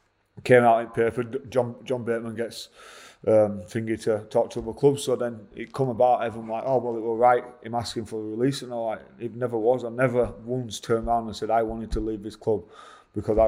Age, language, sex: 30-49, English, male